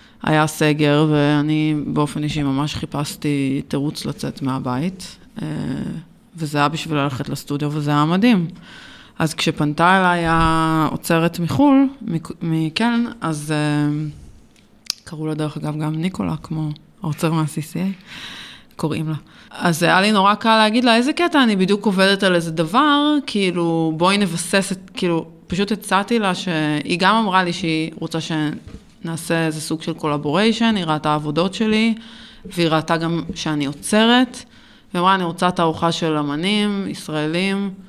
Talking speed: 140 wpm